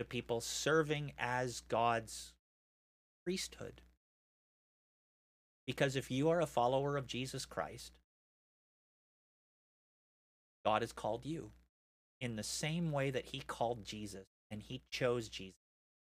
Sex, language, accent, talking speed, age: male, English, American, 110 wpm, 30-49